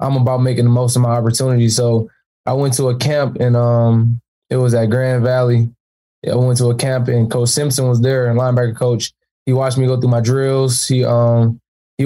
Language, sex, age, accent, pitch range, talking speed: English, male, 10-29, American, 120-130 Hz, 220 wpm